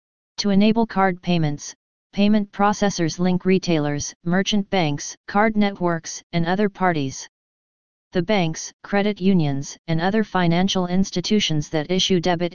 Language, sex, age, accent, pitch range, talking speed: English, female, 40-59, American, 165-195 Hz, 125 wpm